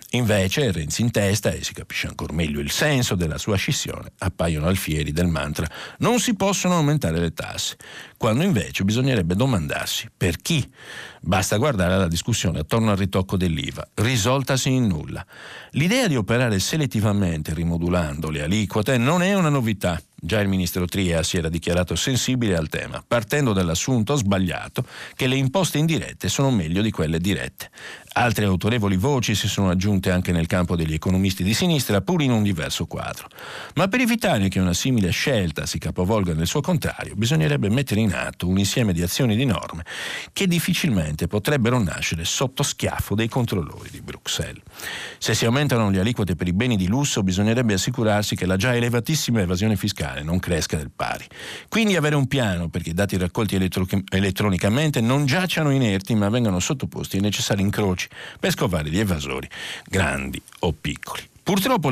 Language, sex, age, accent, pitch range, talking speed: Italian, male, 50-69, native, 90-125 Hz, 170 wpm